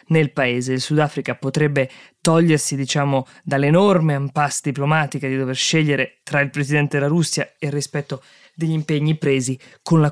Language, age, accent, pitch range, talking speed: Italian, 20-39, native, 130-155 Hz, 155 wpm